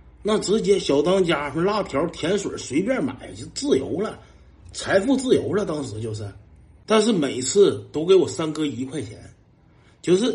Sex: male